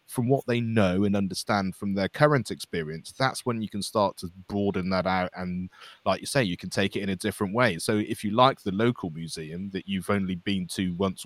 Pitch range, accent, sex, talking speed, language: 95-115 Hz, British, male, 235 wpm, English